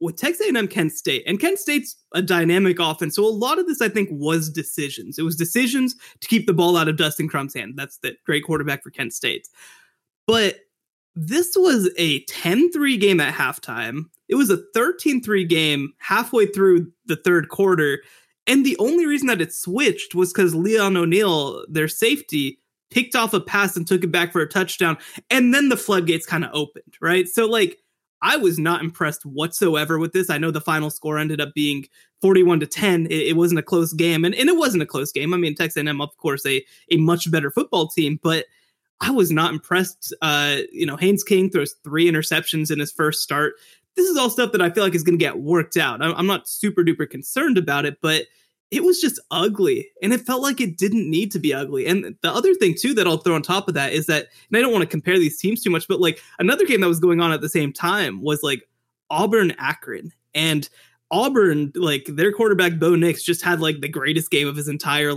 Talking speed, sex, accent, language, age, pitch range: 225 wpm, male, American, English, 20-39, 155-205 Hz